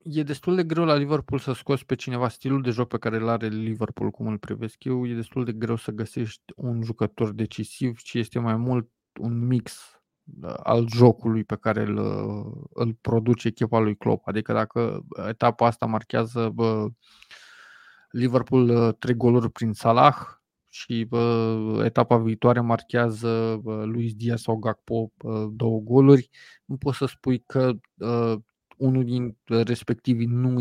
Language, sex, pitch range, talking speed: Romanian, male, 115-130 Hz, 155 wpm